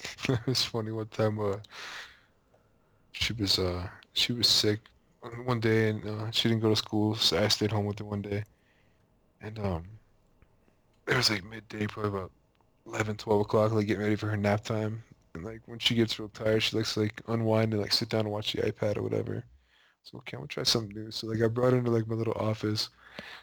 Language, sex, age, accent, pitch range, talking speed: English, male, 20-39, American, 105-120 Hz, 220 wpm